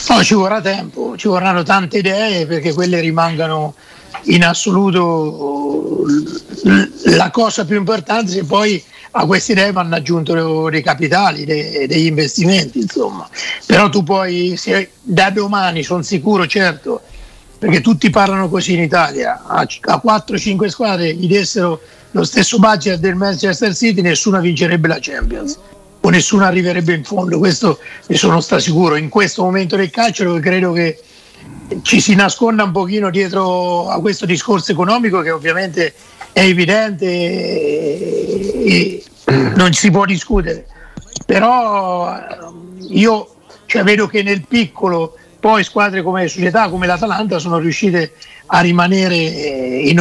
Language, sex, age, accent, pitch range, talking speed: Italian, male, 50-69, native, 170-205 Hz, 135 wpm